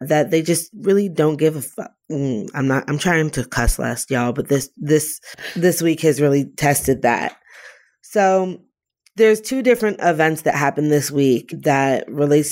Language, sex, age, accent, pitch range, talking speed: English, female, 20-39, American, 140-160 Hz, 175 wpm